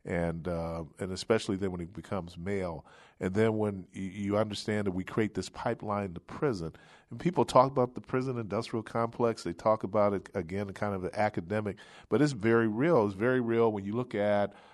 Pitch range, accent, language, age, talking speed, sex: 95-115 Hz, American, English, 40-59, 205 wpm, male